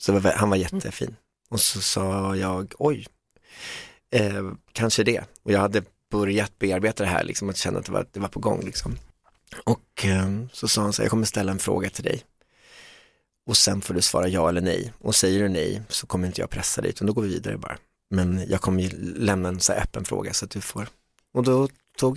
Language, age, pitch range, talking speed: Swedish, 30-49, 95-110 Hz, 230 wpm